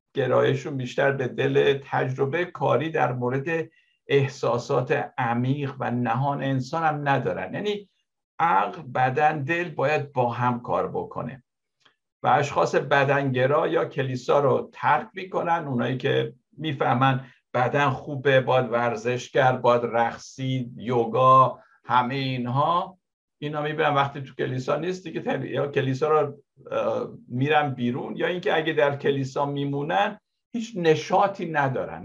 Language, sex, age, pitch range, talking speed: Persian, male, 60-79, 125-160 Hz, 125 wpm